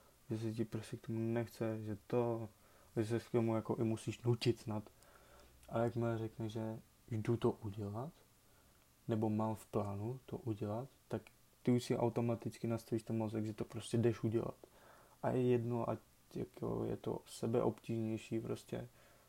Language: Czech